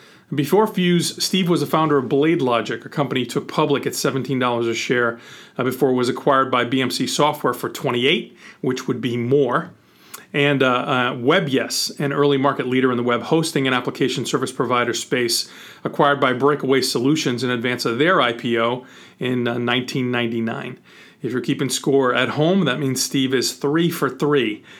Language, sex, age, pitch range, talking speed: English, male, 40-59, 130-150 Hz, 175 wpm